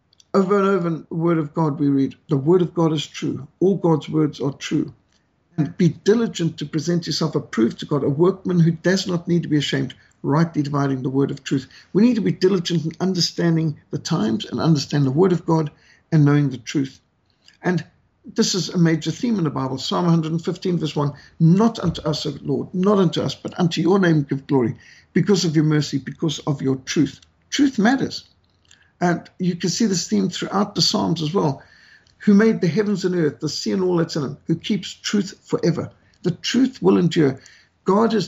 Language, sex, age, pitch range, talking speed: English, male, 60-79, 150-185 Hz, 210 wpm